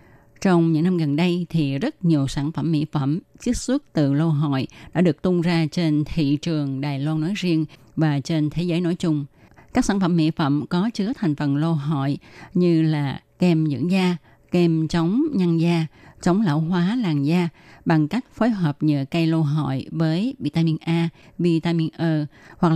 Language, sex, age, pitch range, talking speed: Vietnamese, female, 20-39, 145-175 Hz, 190 wpm